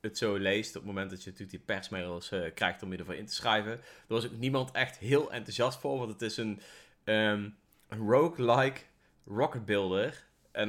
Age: 20-39